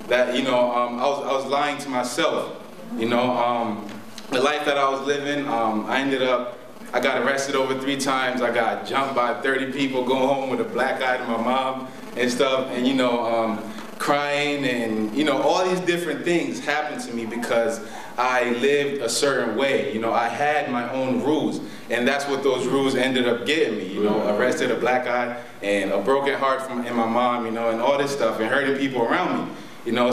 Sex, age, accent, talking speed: male, 20-39, American, 220 wpm